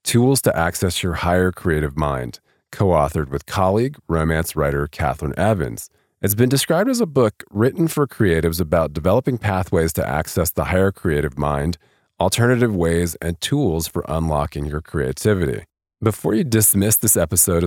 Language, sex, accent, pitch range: English, male, American, 80-105 Hz